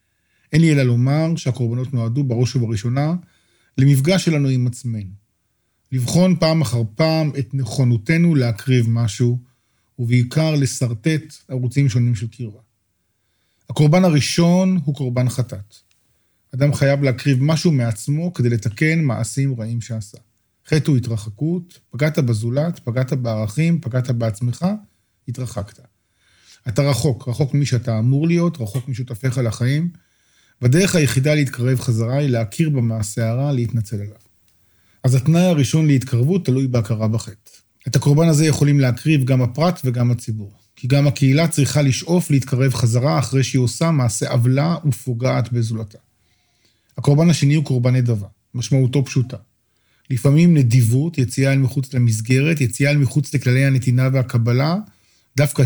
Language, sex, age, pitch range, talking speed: Hebrew, male, 40-59, 115-145 Hz, 130 wpm